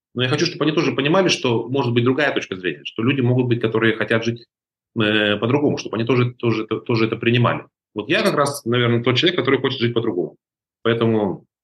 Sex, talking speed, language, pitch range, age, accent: male, 220 wpm, Russian, 110-135 Hz, 30-49, native